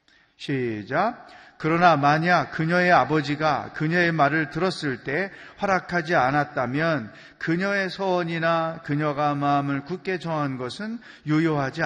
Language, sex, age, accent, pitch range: Korean, male, 40-59, native, 135-180 Hz